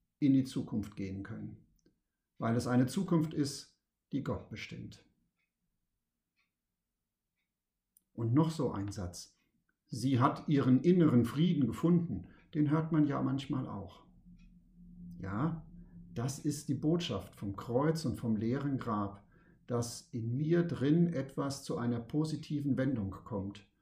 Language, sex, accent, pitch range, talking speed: German, male, German, 115-155 Hz, 130 wpm